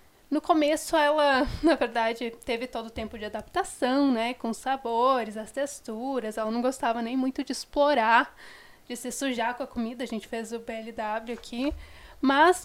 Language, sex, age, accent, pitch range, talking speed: Portuguese, female, 10-29, Brazilian, 230-295 Hz, 175 wpm